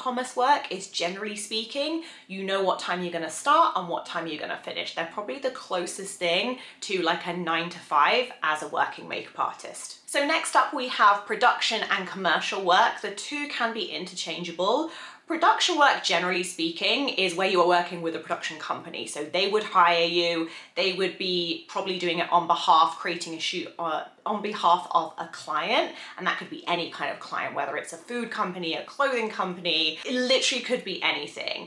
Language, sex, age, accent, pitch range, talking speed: English, female, 30-49, British, 170-230 Hz, 195 wpm